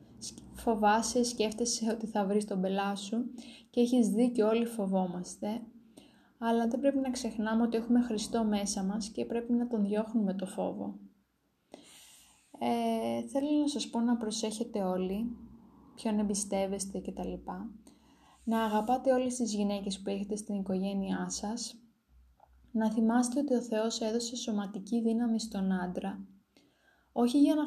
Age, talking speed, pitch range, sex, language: 20-39, 135 wpm, 200-240 Hz, female, Greek